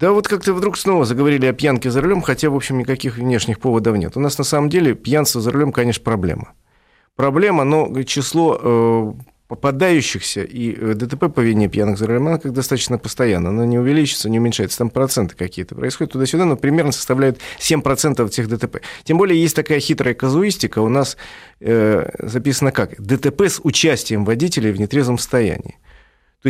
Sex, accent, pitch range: male, native, 115-150 Hz